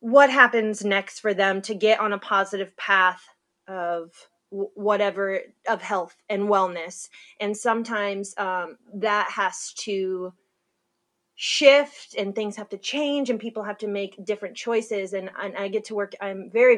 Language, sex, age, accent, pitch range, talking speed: English, female, 20-39, American, 185-215 Hz, 155 wpm